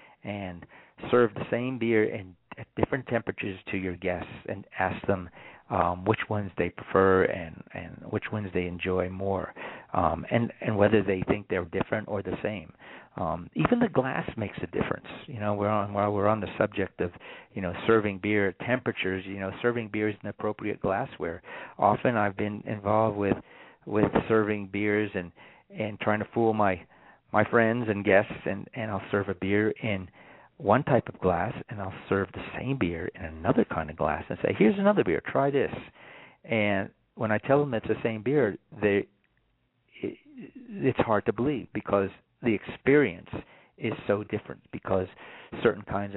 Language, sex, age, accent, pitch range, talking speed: English, male, 50-69, American, 95-110 Hz, 180 wpm